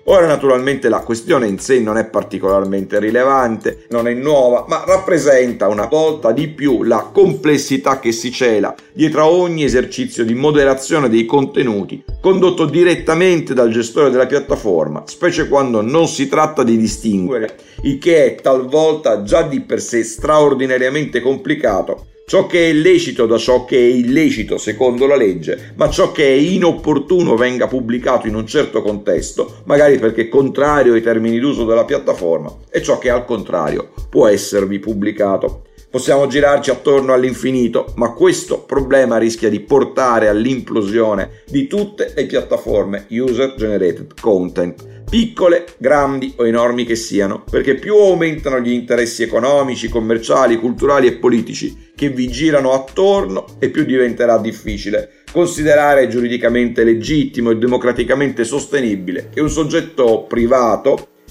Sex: male